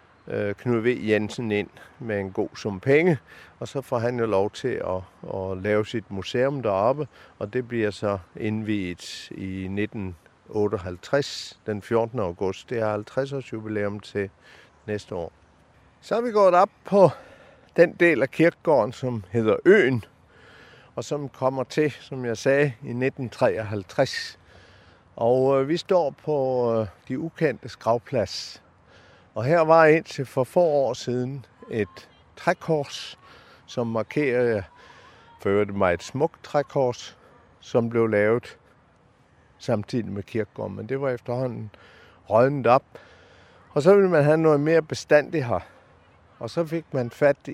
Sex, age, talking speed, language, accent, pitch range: male, 50-69, 145 wpm, Danish, native, 105-140 Hz